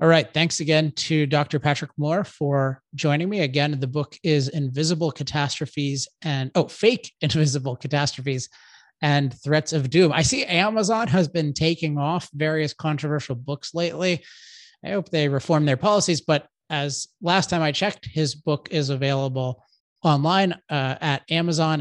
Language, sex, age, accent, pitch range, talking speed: English, male, 30-49, American, 140-165 Hz, 155 wpm